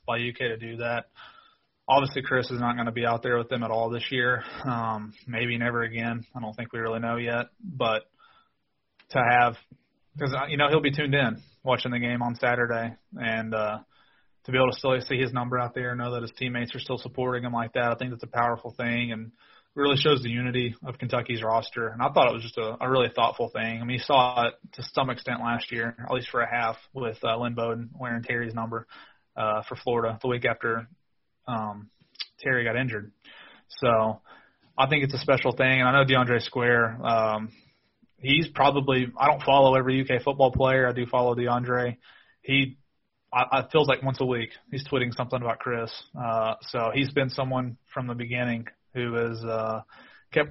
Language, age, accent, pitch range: English, 30-49, American, 115-130 Hz